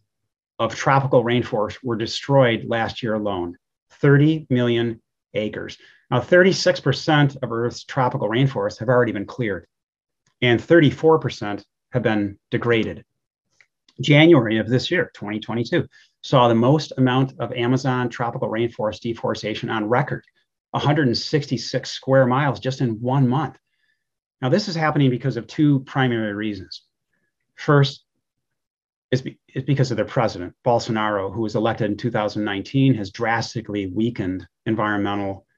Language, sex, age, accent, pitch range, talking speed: English, male, 30-49, American, 110-135 Hz, 125 wpm